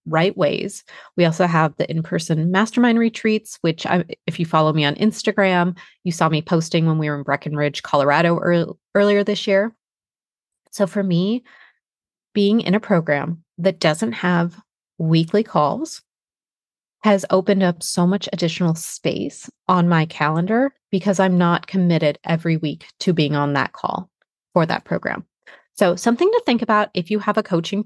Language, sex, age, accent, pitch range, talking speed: English, female, 30-49, American, 170-220 Hz, 170 wpm